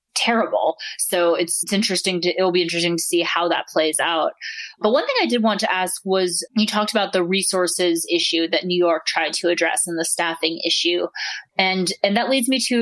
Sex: female